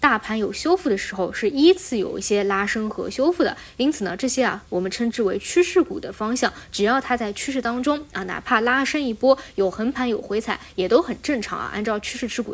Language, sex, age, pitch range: Chinese, female, 20-39, 205-265 Hz